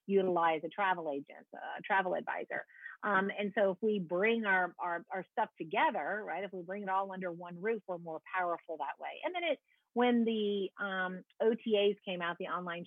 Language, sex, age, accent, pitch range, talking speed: English, female, 40-59, American, 165-200 Hz, 200 wpm